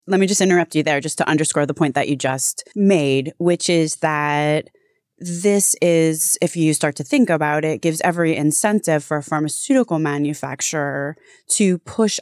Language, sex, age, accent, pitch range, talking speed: English, female, 20-39, American, 150-190 Hz, 175 wpm